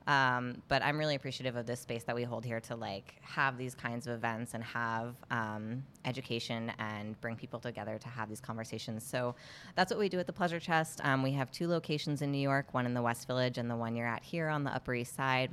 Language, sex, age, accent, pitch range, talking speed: English, female, 20-39, American, 115-135 Hz, 245 wpm